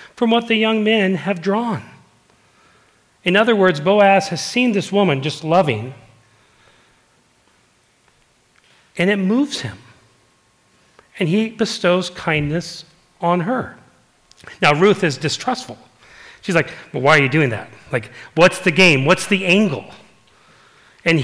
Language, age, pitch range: English, 40-59, 125-175 Hz